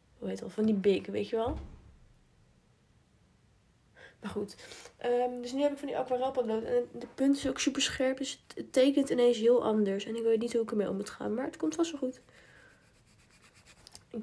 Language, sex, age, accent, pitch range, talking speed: Dutch, female, 20-39, Dutch, 215-255 Hz, 195 wpm